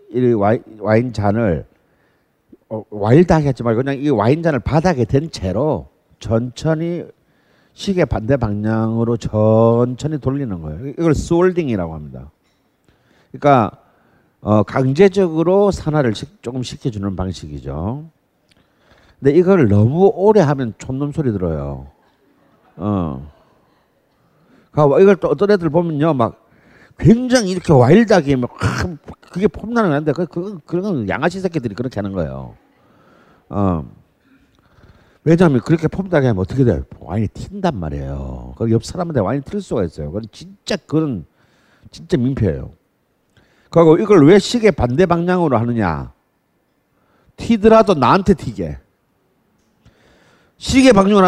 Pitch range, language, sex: 105-175 Hz, Korean, male